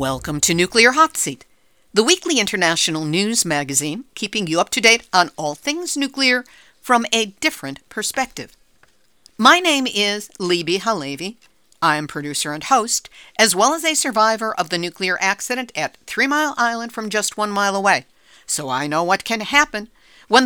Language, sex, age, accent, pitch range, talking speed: English, female, 60-79, American, 185-265 Hz, 170 wpm